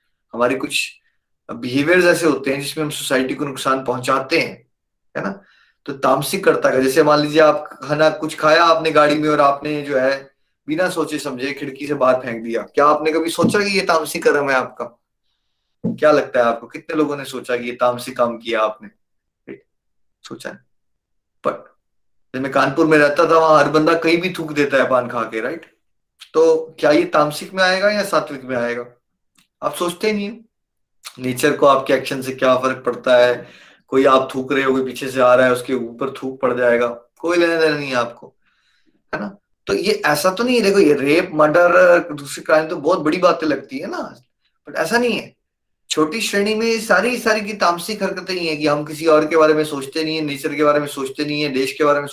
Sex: male